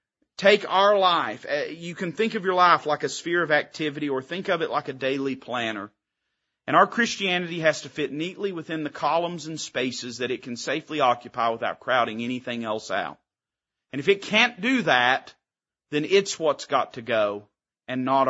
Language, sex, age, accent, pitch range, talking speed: English, male, 40-59, American, 125-175 Hz, 190 wpm